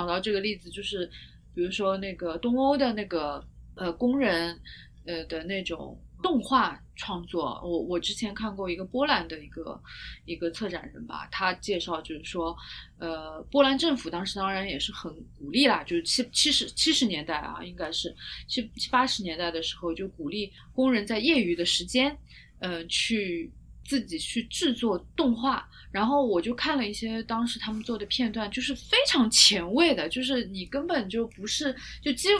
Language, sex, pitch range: Chinese, female, 175-265 Hz